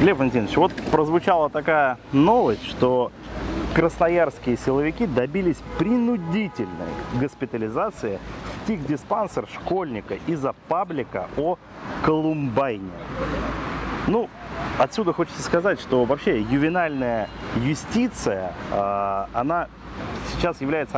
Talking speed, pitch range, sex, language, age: 85 wpm, 115-155 Hz, male, Russian, 30-49